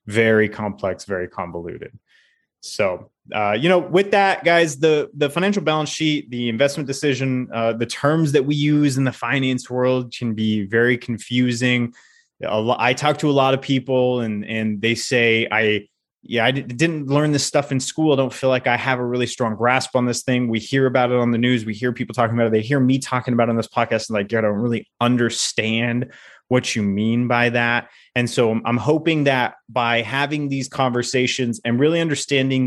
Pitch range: 115-140 Hz